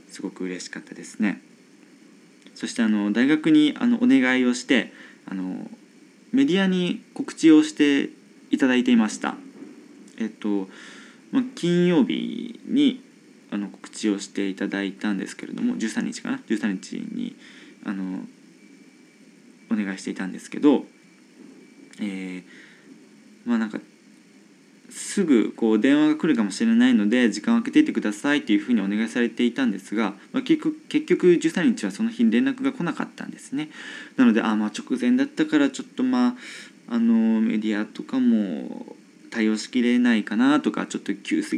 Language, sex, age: Japanese, male, 20-39